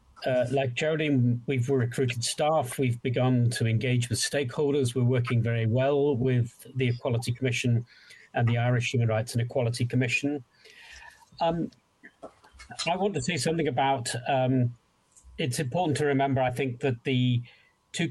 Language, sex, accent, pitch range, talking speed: English, male, British, 120-140 Hz, 150 wpm